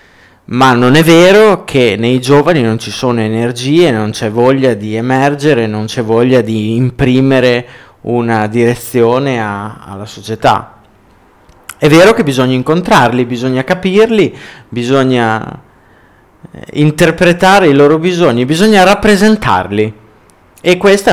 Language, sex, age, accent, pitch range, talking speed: Italian, male, 20-39, native, 110-155 Hz, 115 wpm